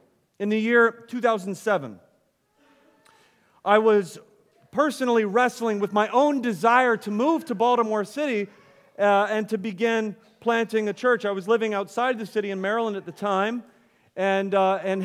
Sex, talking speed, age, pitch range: male, 150 wpm, 40-59, 180-230 Hz